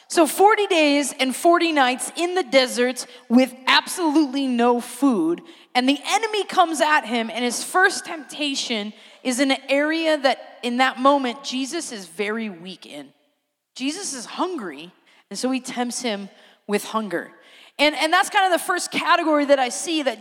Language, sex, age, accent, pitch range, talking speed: English, female, 30-49, American, 255-330 Hz, 170 wpm